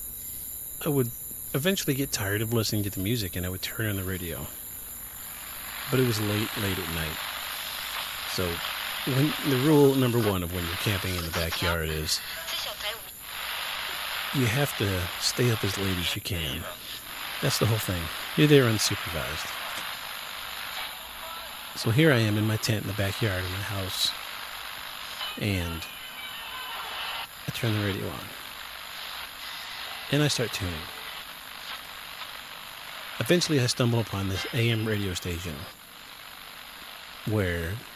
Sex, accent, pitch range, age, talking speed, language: male, American, 95-125 Hz, 40-59, 135 wpm, English